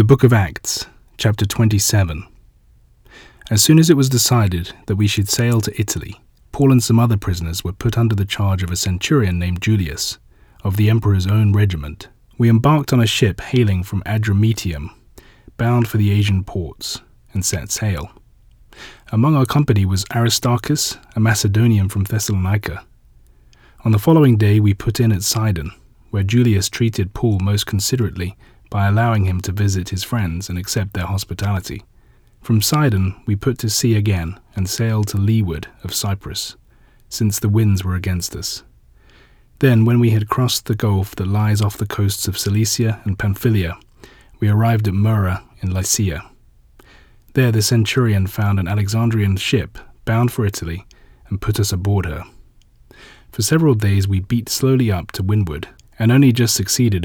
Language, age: English, 30-49